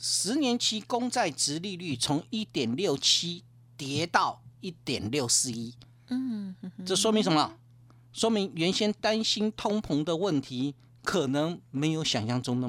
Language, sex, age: Chinese, male, 50-69